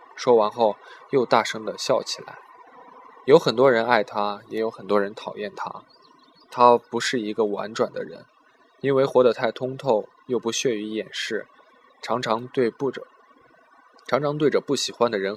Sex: male